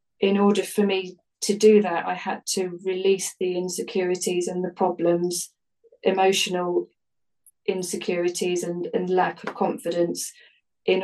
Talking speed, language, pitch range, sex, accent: 130 wpm, English, 175-195 Hz, female, British